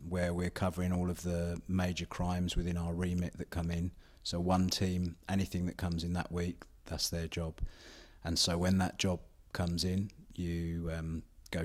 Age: 30-49